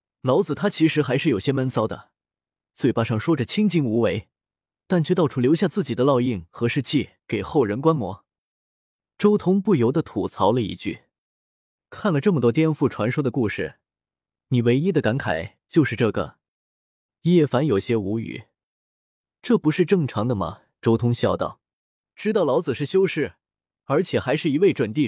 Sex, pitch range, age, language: male, 115-160 Hz, 20-39, Chinese